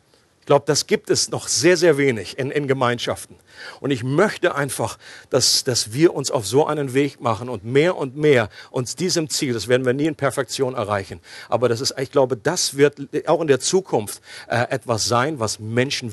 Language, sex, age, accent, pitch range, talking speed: German, male, 50-69, German, 120-165 Hz, 205 wpm